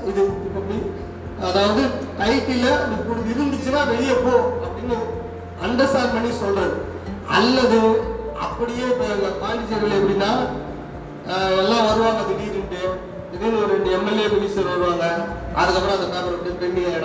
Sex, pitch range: male, 185-230 Hz